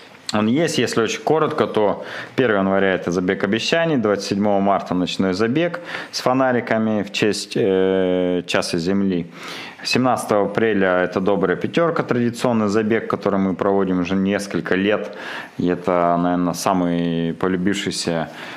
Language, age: Russian, 30-49